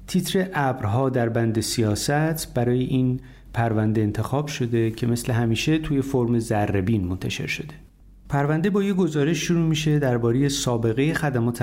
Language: Persian